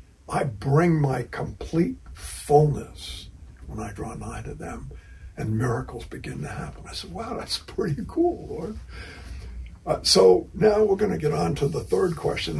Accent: American